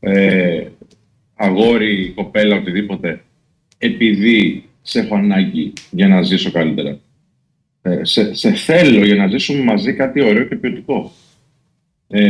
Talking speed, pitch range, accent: 120 wpm, 120-195 Hz, native